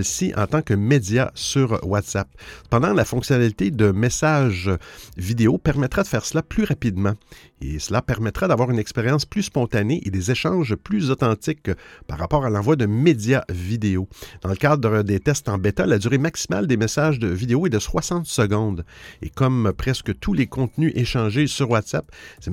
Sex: male